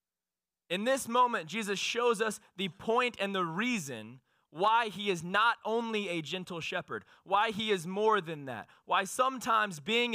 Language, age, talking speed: English, 20-39, 165 wpm